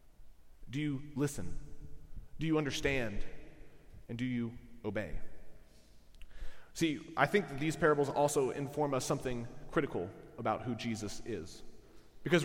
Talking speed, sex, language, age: 125 wpm, male, English, 30-49